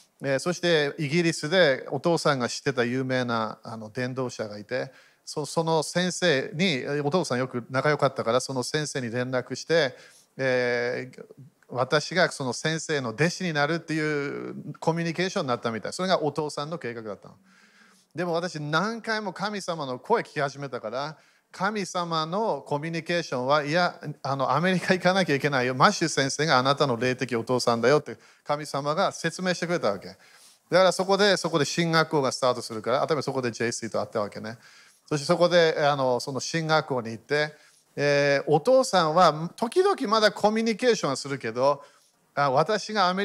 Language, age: Japanese, 40-59